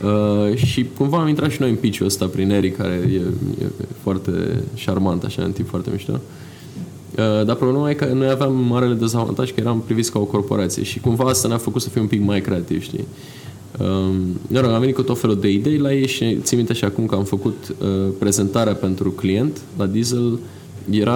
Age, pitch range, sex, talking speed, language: 20-39, 100-130 Hz, male, 210 wpm, Romanian